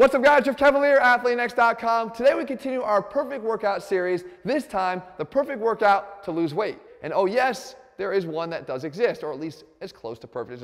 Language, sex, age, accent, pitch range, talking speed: English, male, 30-49, American, 185-245 Hz, 210 wpm